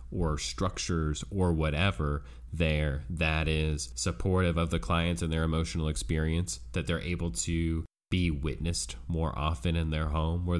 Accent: American